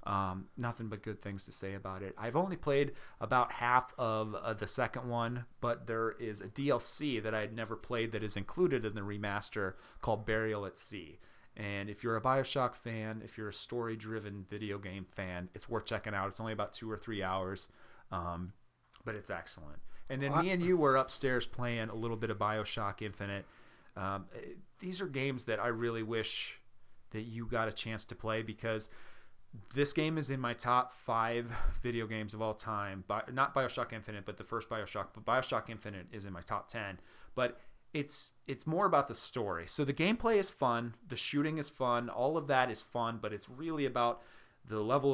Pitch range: 105-125 Hz